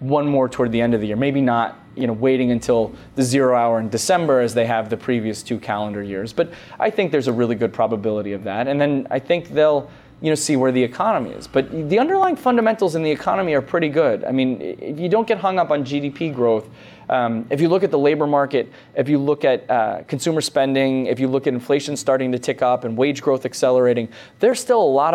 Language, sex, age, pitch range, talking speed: English, male, 20-39, 115-145 Hz, 245 wpm